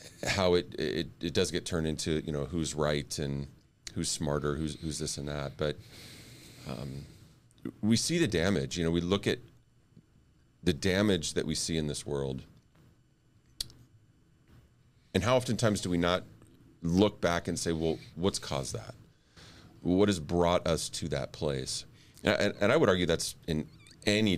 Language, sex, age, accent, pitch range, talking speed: English, male, 40-59, American, 75-90 Hz, 170 wpm